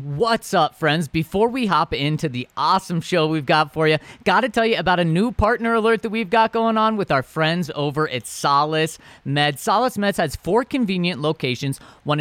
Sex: male